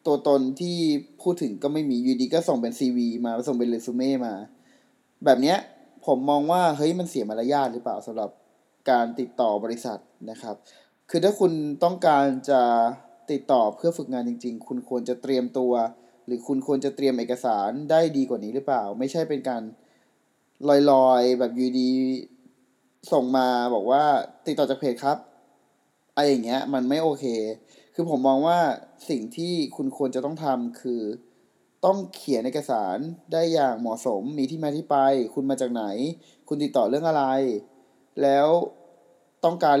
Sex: male